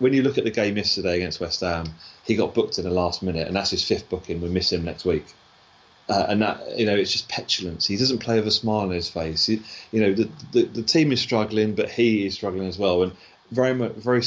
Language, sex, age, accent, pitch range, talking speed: English, male, 30-49, British, 90-110 Hz, 265 wpm